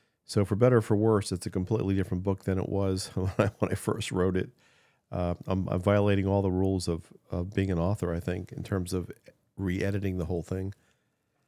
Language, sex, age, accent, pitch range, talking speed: English, male, 50-69, American, 90-110 Hz, 220 wpm